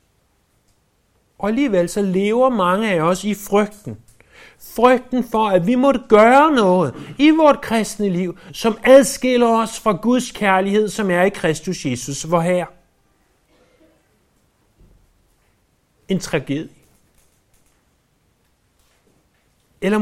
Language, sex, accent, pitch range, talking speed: Danish, male, native, 170-235 Hz, 110 wpm